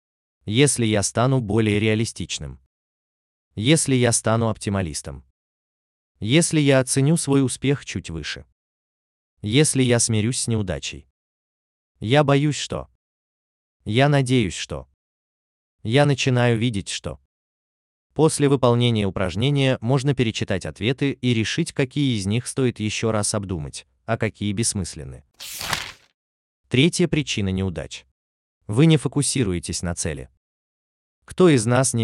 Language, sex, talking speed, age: Russian, male, 115 wpm, 30-49